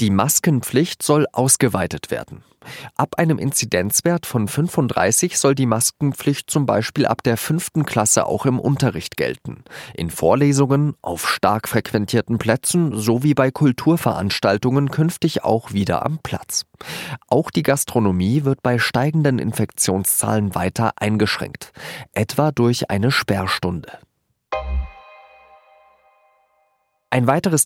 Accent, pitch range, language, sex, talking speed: German, 100-135 Hz, German, male, 115 wpm